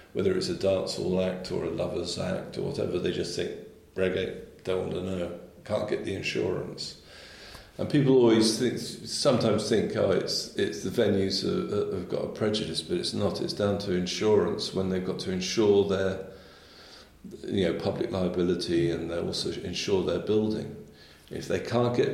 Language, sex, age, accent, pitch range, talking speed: English, male, 50-69, British, 85-100 Hz, 180 wpm